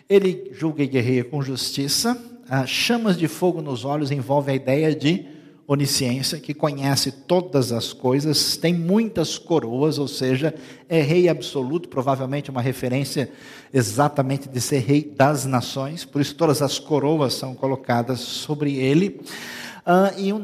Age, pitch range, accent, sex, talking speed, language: 50-69, 135-160 Hz, Brazilian, male, 145 wpm, Portuguese